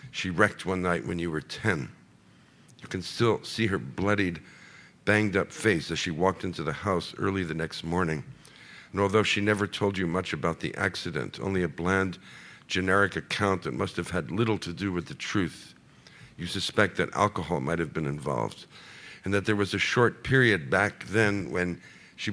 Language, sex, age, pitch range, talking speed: English, male, 60-79, 90-105 Hz, 190 wpm